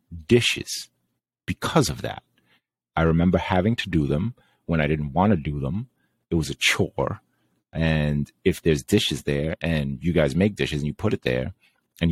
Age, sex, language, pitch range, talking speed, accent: 30-49, male, English, 70-95 Hz, 185 wpm, American